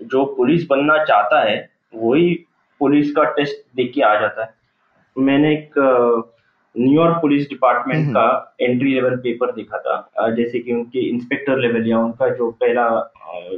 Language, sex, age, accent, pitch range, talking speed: Hindi, male, 20-39, native, 115-155 Hz, 115 wpm